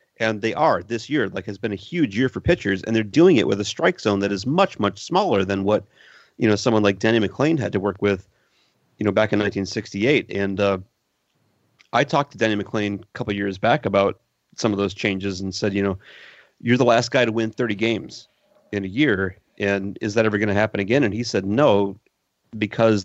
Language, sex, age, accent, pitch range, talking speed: English, male, 30-49, American, 100-120 Hz, 230 wpm